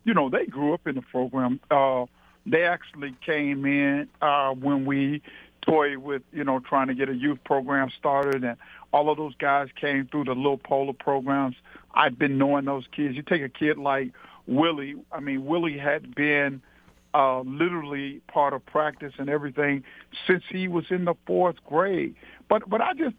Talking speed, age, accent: 190 wpm, 50-69, American